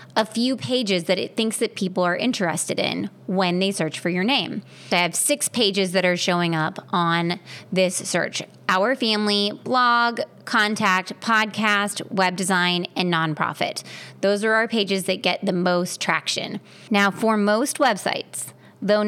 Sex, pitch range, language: female, 175-215 Hz, English